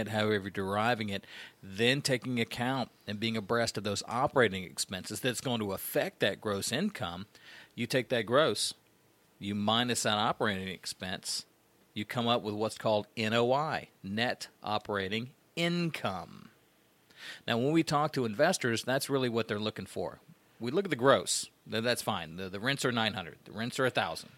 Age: 40-59